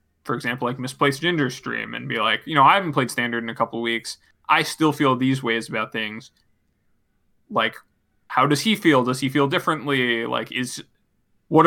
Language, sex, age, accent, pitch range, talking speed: English, male, 20-39, American, 120-150 Hz, 195 wpm